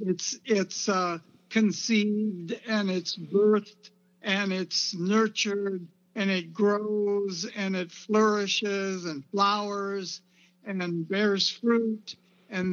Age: 60-79